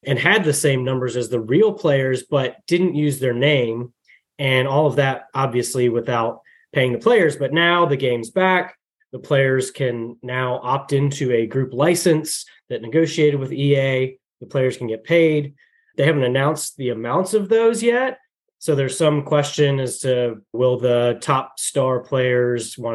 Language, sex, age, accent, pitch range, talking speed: English, male, 20-39, American, 125-160 Hz, 175 wpm